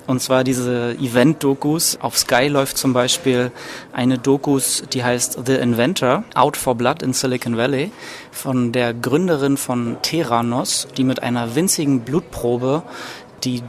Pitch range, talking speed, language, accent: 125-150 Hz, 140 wpm, German, German